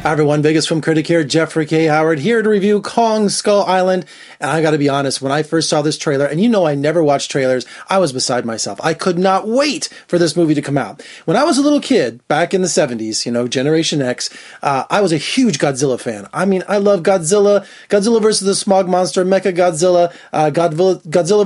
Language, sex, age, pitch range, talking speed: English, male, 30-49, 145-190 Hz, 230 wpm